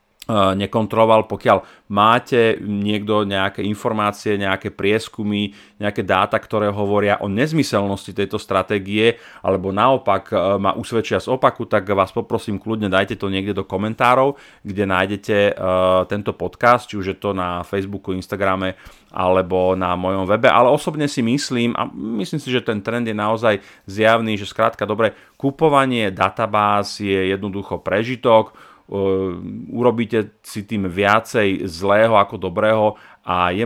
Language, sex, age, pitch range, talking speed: Slovak, male, 30-49, 95-115 Hz, 140 wpm